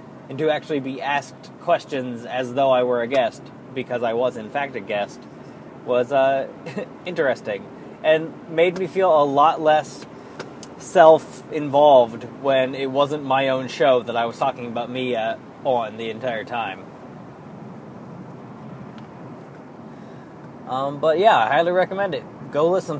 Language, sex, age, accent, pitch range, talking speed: English, male, 20-39, American, 125-165 Hz, 145 wpm